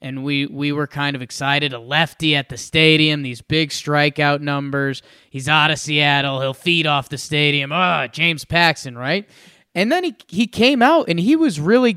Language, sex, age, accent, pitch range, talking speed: English, male, 20-39, American, 145-200 Hz, 195 wpm